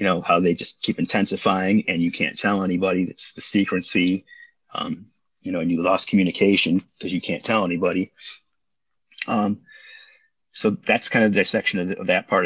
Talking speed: 190 wpm